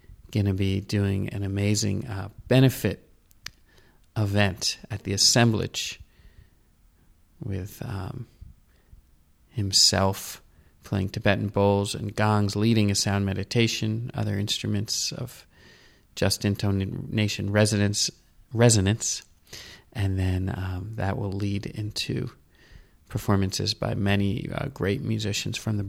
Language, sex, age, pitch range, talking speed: English, male, 30-49, 95-115 Hz, 105 wpm